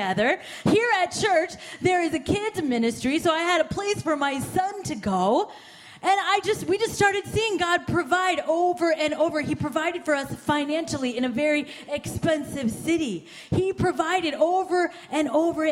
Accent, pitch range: American, 280-360 Hz